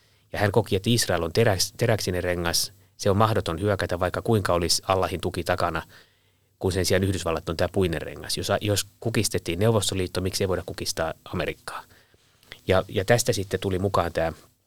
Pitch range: 90-110 Hz